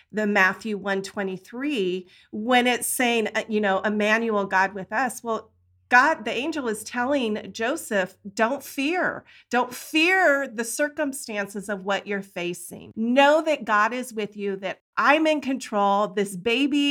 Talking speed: 145 wpm